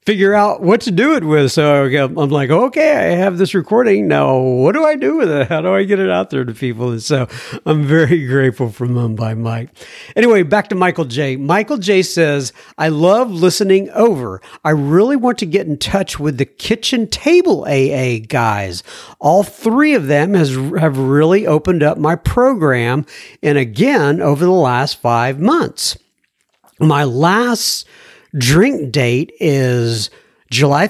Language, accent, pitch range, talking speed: English, American, 140-205 Hz, 170 wpm